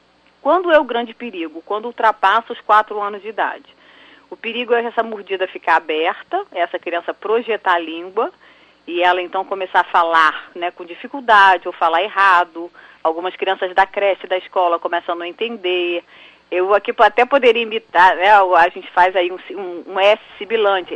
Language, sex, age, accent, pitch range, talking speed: Portuguese, female, 30-49, Brazilian, 175-240 Hz, 175 wpm